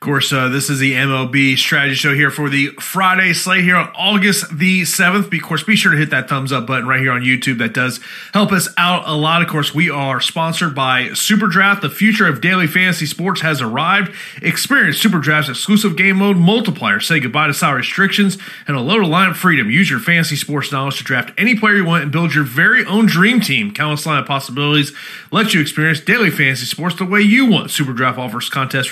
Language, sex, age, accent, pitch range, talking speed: English, male, 30-49, American, 135-190 Hz, 230 wpm